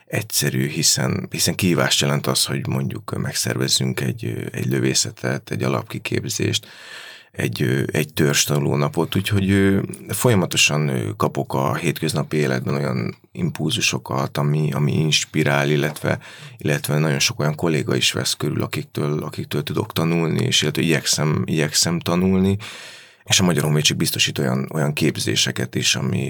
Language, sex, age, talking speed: Hungarian, male, 30-49, 130 wpm